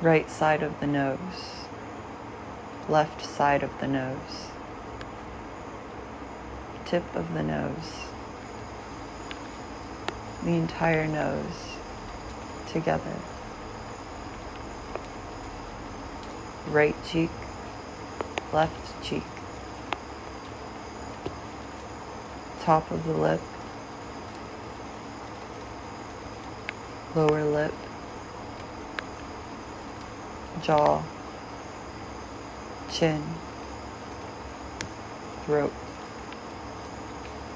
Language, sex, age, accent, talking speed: English, female, 30-49, American, 50 wpm